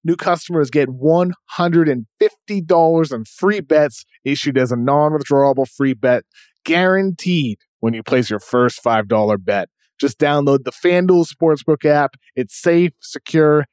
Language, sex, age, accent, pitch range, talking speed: English, male, 20-39, American, 125-160 Hz, 130 wpm